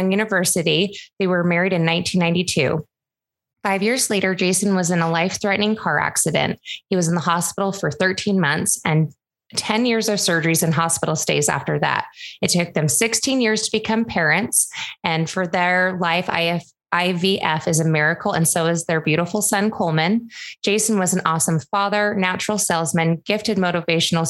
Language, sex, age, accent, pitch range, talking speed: English, female, 20-39, American, 165-195 Hz, 165 wpm